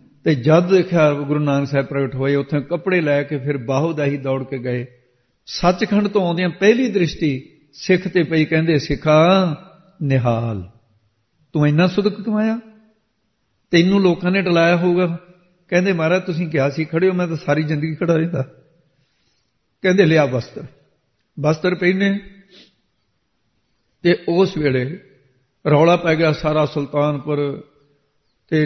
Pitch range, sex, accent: 145-180 Hz, male, Indian